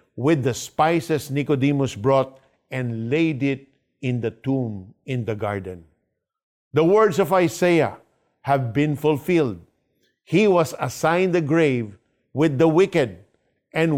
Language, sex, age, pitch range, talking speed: Filipino, male, 50-69, 130-175 Hz, 130 wpm